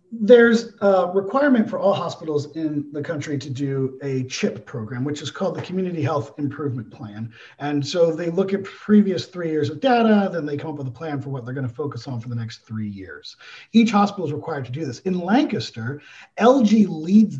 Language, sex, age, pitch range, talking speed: English, male, 40-59, 140-210 Hz, 215 wpm